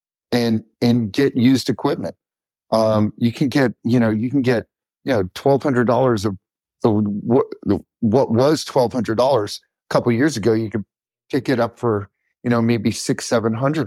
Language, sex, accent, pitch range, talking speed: English, male, American, 110-125 Hz, 185 wpm